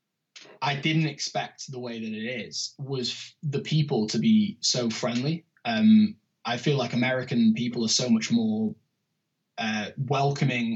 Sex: male